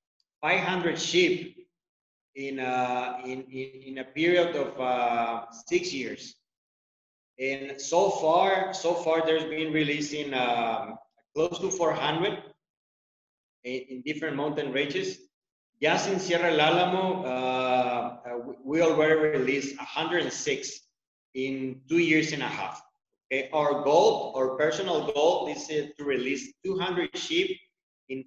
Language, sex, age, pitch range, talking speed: English, male, 30-49, 130-180 Hz, 110 wpm